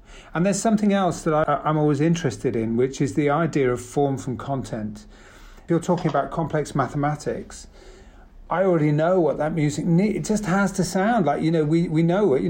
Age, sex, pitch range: 40-59, male, 120-155 Hz